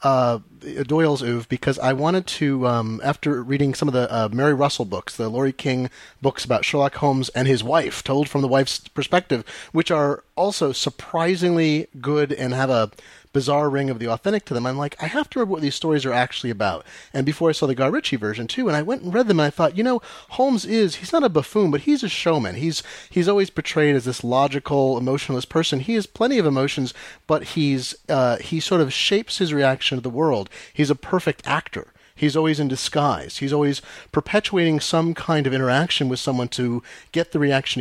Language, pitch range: English, 125-160 Hz